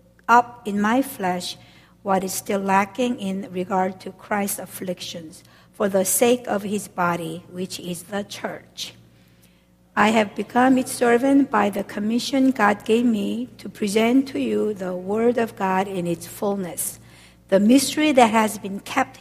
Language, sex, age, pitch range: Korean, female, 60-79, 185-245 Hz